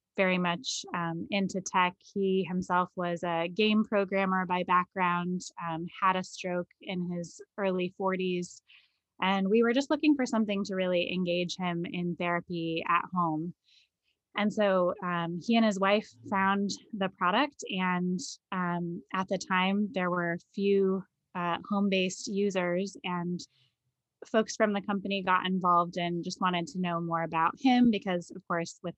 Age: 20-39